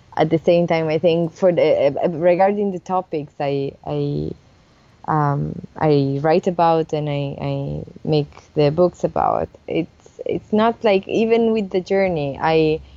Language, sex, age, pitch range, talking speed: English, female, 20-39, 150-180 Hz, 155 wpm